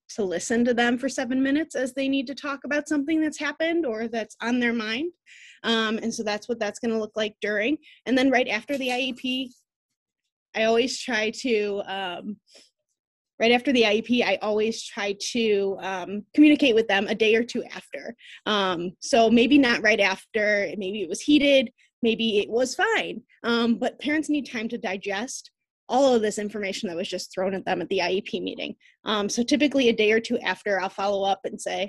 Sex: female